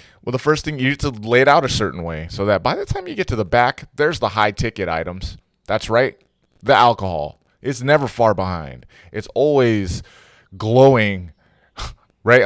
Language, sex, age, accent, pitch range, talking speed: English, male, 20-39, American, 90-115 Hz, 195 wpm